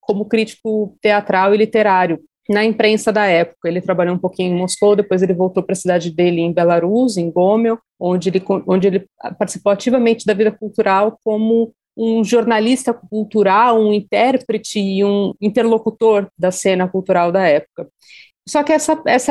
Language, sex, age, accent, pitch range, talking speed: Portuguese, female, 40-59, Brazilian, 190-235 Hz, 165 wpm